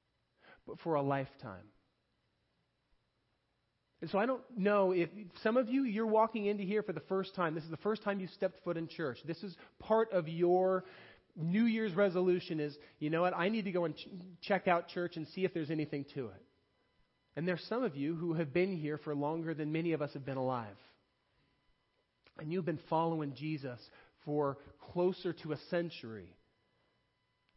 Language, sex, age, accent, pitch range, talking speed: English, male, 30-49, American, 140-185 Hz, 185 wpm